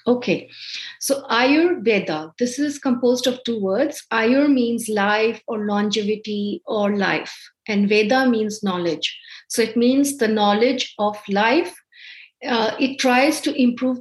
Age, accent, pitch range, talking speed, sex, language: 50-69, Indian, 205-265 Hz, 135 wpm, female, English